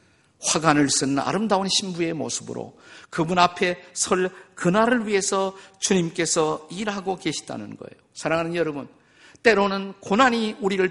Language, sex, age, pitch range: Korean, male, 50-69, 145-195 Hz